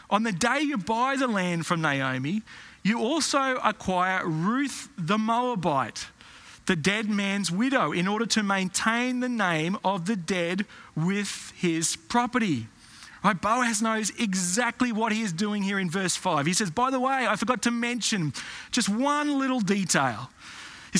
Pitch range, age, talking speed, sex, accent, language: 185-240 Hz, 30-49, 165 wpm, male, Australian, English